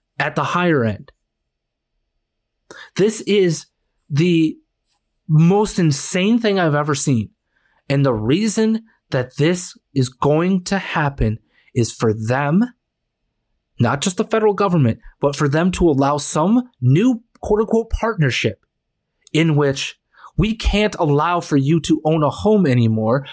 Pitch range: 140-195 Hz